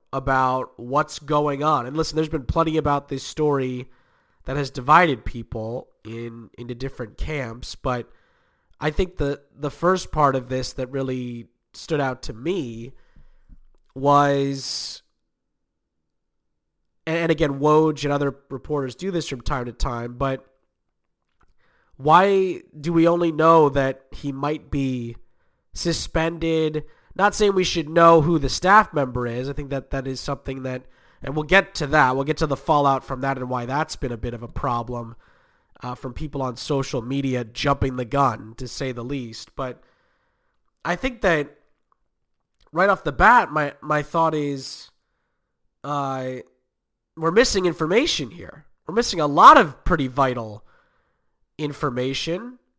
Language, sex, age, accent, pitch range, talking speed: English, male, 30-49, American, 125-155 Hz, 155 wpm